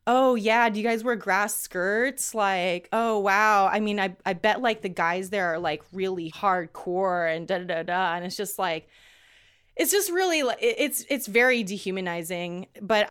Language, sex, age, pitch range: English, female, 20-39, 185-225 Hz